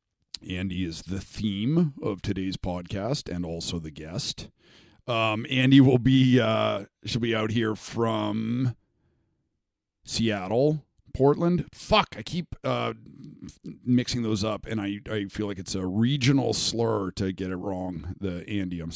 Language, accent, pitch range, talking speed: English, American, 95-125 Hz, 145 wpm